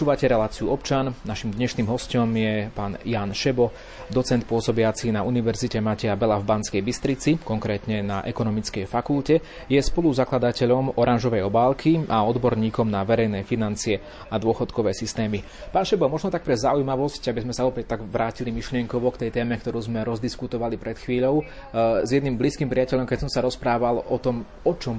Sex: male